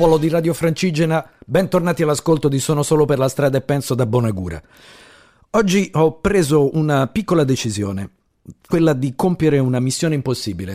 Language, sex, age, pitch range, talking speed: Italian, male, 50-69, 100-145 Hz, 150 wpm